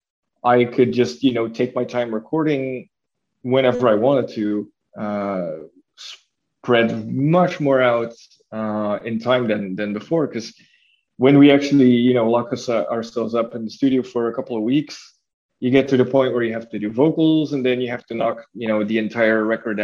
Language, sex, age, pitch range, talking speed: English, male, 20-39, 110-130 Hz, 195 wpm